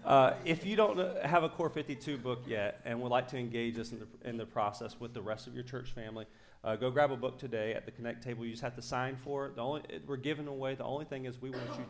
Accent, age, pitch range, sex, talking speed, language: American, 30-49, 115-145 Hz, male, 285 wpm, English